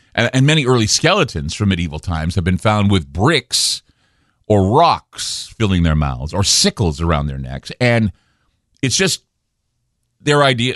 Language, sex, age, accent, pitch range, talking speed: English, male, 40-59, American, 90-120 Hz, 150 wpm